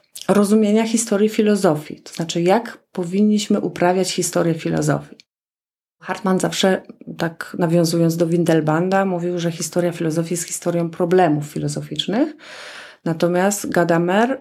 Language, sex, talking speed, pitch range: Polish, female, 110 wpm, 170-225 Hz